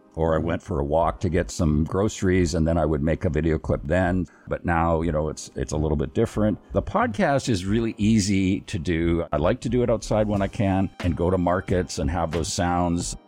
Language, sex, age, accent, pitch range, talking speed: English, male, 50-69, American, 80-100 Hz, 240 wpm